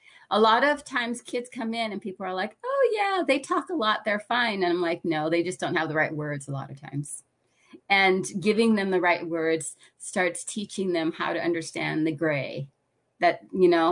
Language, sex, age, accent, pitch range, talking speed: English, female, 30-49, American, 155-200 Hz, 220 wpm